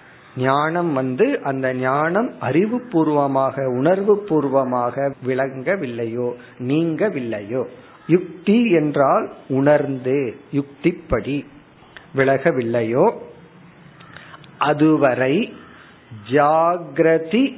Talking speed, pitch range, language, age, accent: 45 wpm, 135-170 Hz, Tamil, 50-69, native